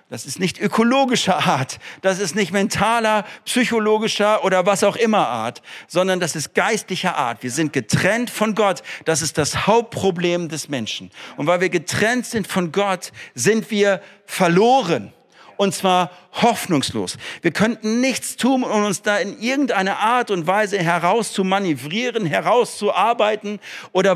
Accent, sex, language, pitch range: German, male, German, 175-220 Hz